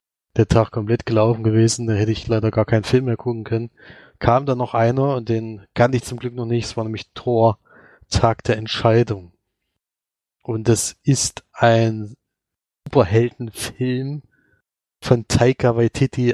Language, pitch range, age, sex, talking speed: German, 110-125 Hz, 20-39, male, 155 wpm